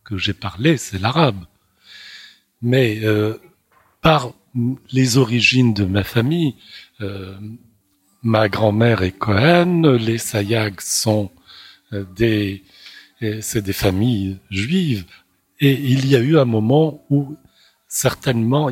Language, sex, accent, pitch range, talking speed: French, male, French, 110-140 Hz, 110 wpm